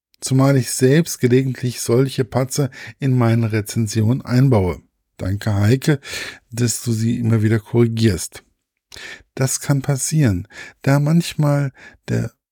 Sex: male